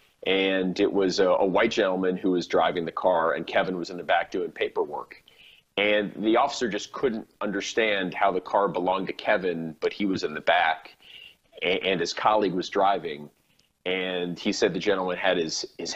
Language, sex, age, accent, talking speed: English, male, 30-49, American, 195 wpm